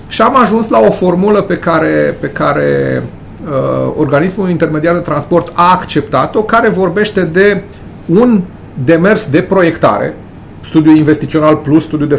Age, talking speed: 30-49, 135 wpm